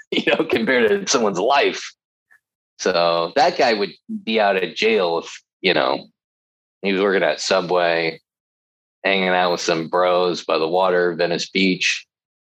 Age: 20-39